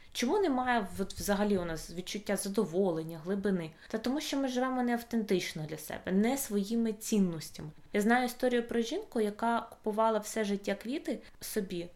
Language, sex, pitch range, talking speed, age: Ukrainian, female, 185-225 Hz, 155 wpm, 20-39